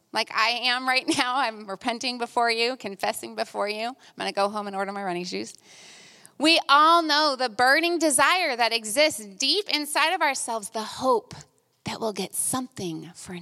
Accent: American